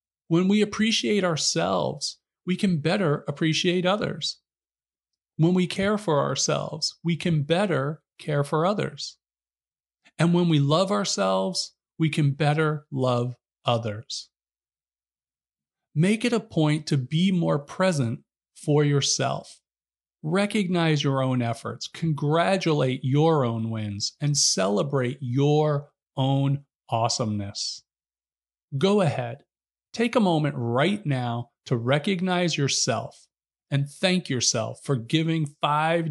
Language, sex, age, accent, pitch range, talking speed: English, male, 40-59, American, 120-170 Hz, 115 wpm